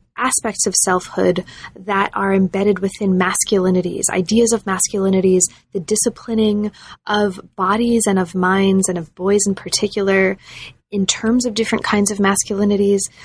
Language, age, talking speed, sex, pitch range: English, 20-39, 135 wpm, female, 185-215 Hz